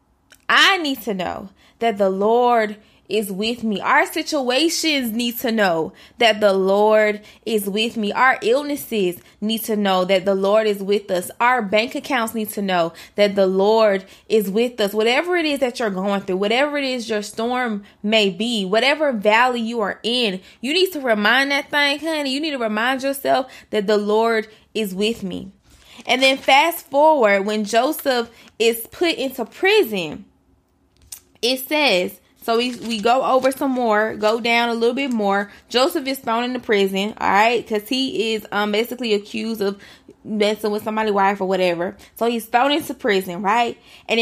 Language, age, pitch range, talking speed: English, 20-39, 205-260 Hz, 180 wpm